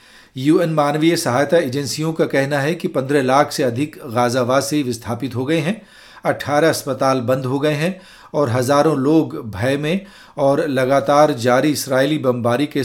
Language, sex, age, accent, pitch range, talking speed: Hindi, male, 40-59, native, 130-155 Hz, 160 wpm